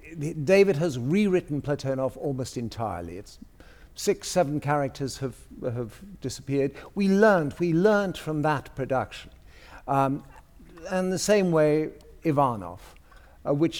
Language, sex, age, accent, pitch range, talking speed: English, male, 50-69, British, 105-160 Hz, 120 wpm